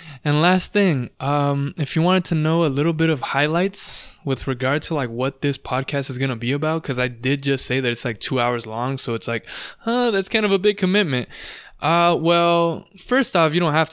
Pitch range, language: 135-170 Hz, English